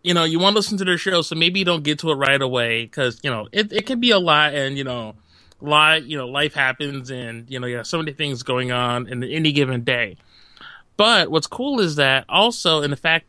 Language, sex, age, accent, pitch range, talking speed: English, male, 30-49, American, 135-180 Hz, 260 wpm